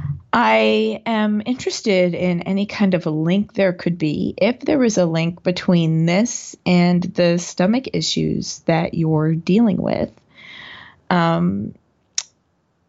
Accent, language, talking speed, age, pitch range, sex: American, English, 130 wpm, 20-39, 165-200 Hz, female